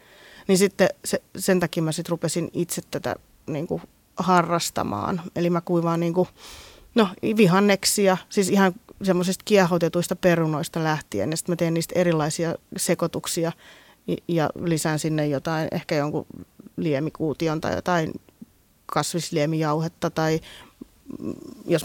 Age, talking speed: 20-39, 120 wpm